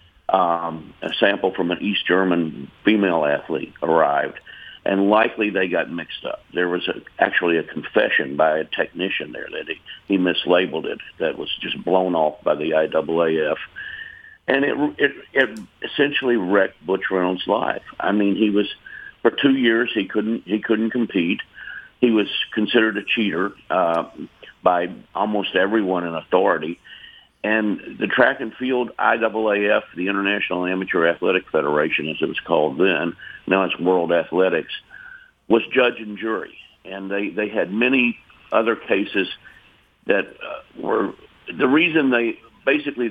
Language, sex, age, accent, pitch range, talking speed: English, male, 50-69, American, 90-115 Hz, 150 wpm